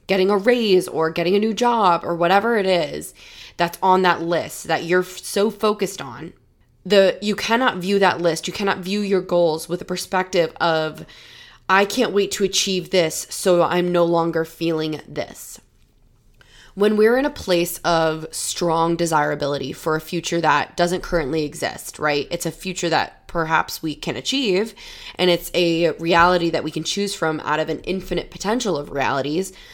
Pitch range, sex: 160-195 Hz, female